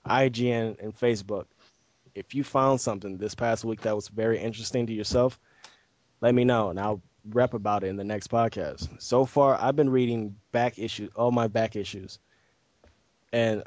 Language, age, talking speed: English, 20-39, 175 wpm